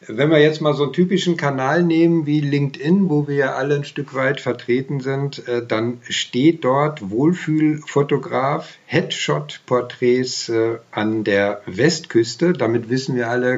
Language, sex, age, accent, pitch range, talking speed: German, male, 50-69, German, 115-150 Hz, 135 wpm